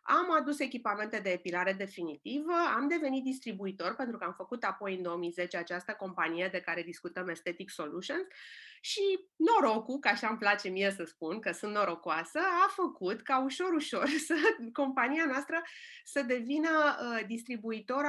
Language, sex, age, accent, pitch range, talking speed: Romanian, female, 30-49, native, 185-280 Hz, 150 wpm